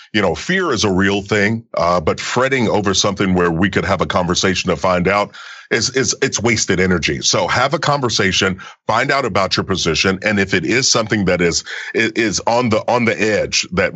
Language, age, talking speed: English, 40-59, 210 wpm